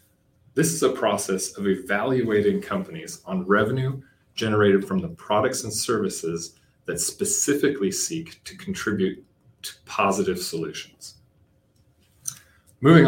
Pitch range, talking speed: 95-135 Hz, 110 wpm